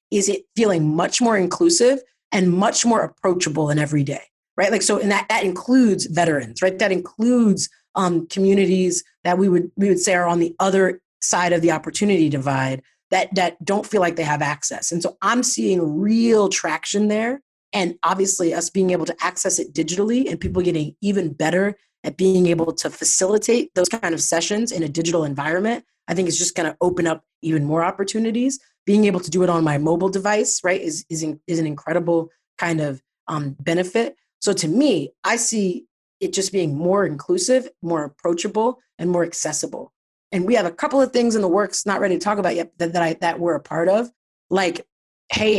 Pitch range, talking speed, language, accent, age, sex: 165-205 Hz, 200 wpm, English, American, 30-49, female